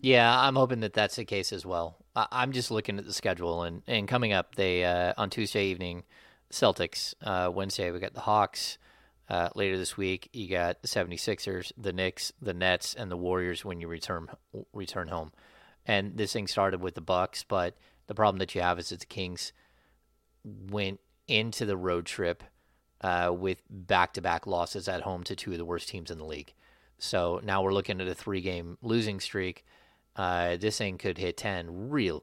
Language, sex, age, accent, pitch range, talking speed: English, male, 30-49, American, 90-110 Hz, 195 wpm